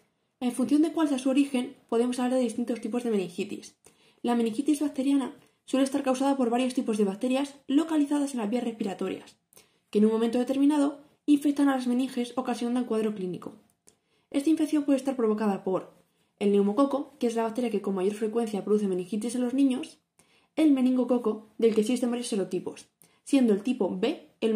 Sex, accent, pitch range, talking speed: female, Spanish, 210-270 Hz, 185 wpm